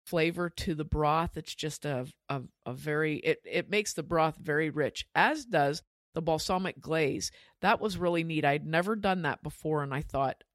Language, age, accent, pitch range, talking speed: English, 50-69, American, 150-180 Hz, 195 wpm